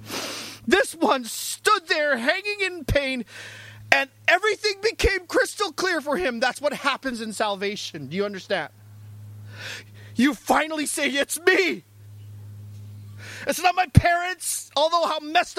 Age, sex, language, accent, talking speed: 40-59, male, English, American, 130 wpm